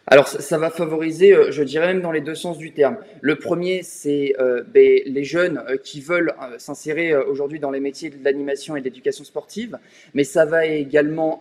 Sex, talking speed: male, 195 wpm